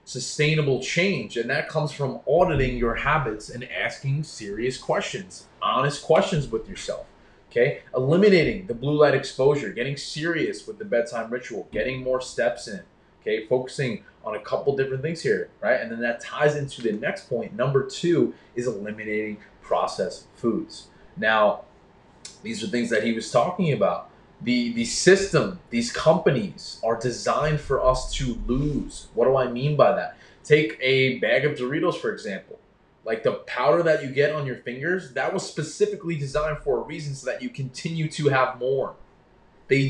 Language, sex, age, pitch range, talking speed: English, male, 20-39, 125-165 Hz, 170 wpm